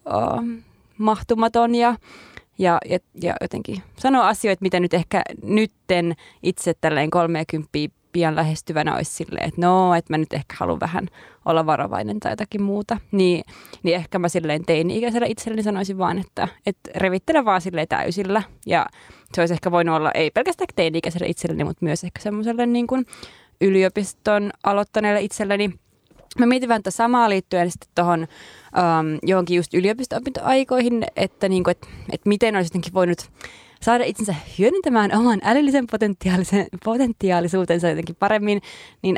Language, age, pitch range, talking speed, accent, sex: Finnish, 20-39, 170-215 Hz, 150 wpm, native, female